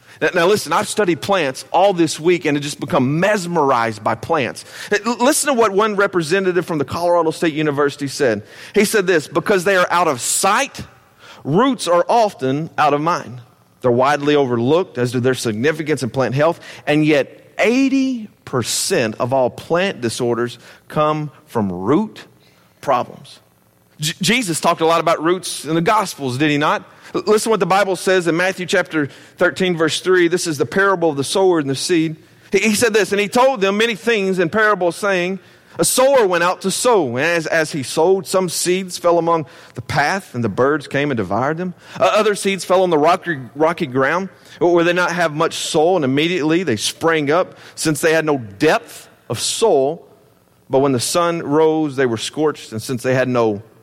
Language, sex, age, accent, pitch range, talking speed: English, male, 40-59, American, 140-190 Hz, 195 wpm